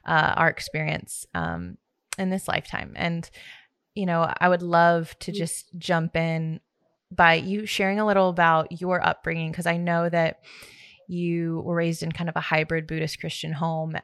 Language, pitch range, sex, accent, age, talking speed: English, 160-180 Hz, female, American, 20-39, 165 wpm